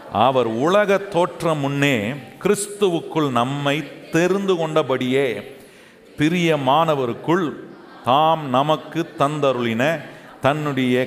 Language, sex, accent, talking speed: Tamil, male, native, 60 wpm